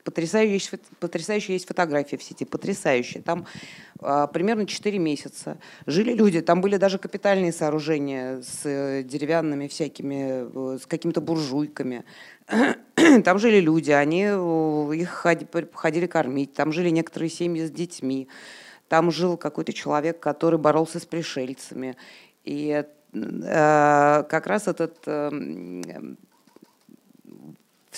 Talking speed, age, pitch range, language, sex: 105 wpm, 30-49, 145-180 Hz, Russian, female